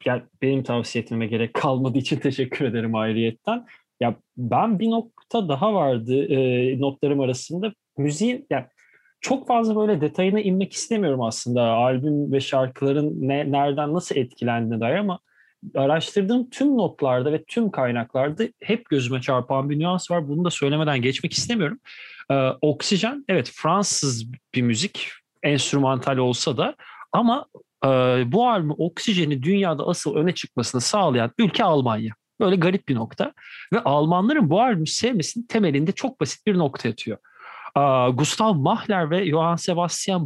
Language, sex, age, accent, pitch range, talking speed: Turkish, male, 30-49, native, 130-195 Hz, 140 wpm